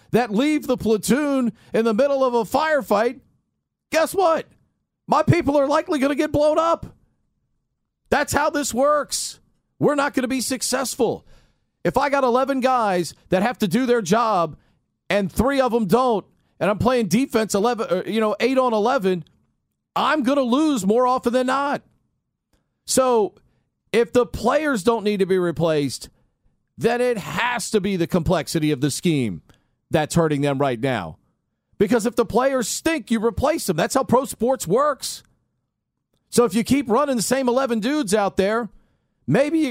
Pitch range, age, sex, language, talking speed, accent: 190-255 Hz, 40-59, male, English, 175 wpm, American